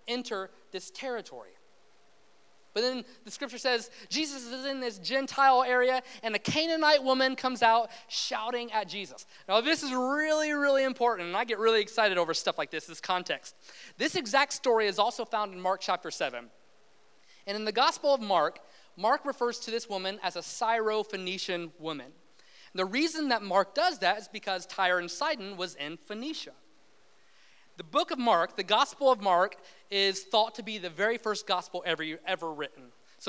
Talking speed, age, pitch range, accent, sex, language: 180 wpm, 30-49, 195-260 Hz, American, male, English